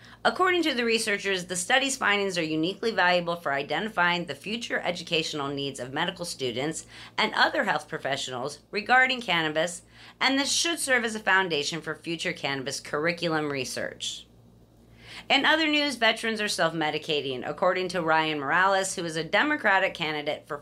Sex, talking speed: female, 155 wpm